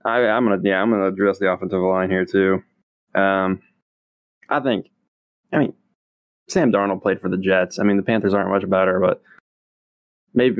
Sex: male